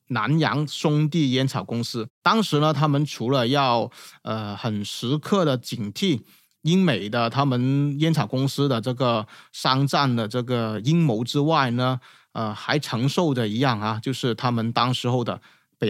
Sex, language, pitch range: male, Chinese, 115-150 Hz